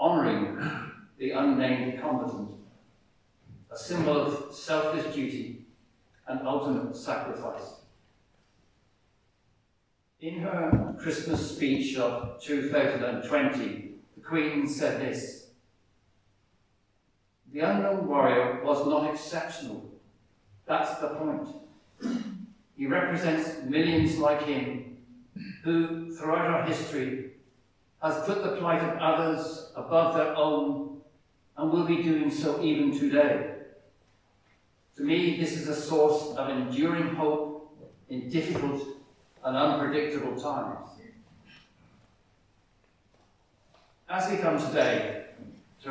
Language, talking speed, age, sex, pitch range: English, 100 wpm, 50-69, male, 125-160 Hz